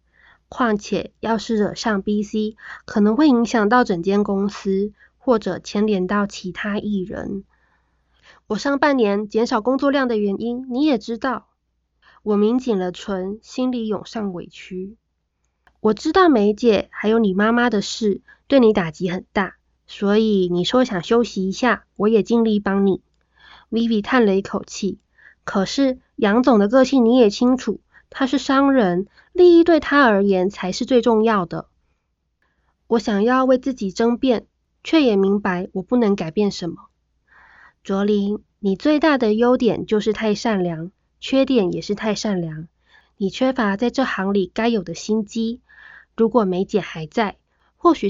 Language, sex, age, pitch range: Chinese, female, 20-39, 195-240 Hz